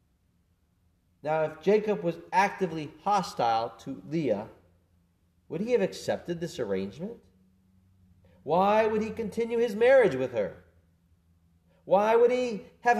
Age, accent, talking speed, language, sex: 40-59, American, 120 wpm, English, male